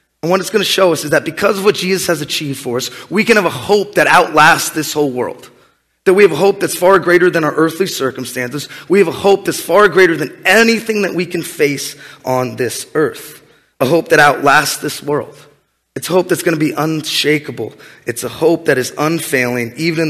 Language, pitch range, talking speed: English, 125-170 Hz, 230 wpm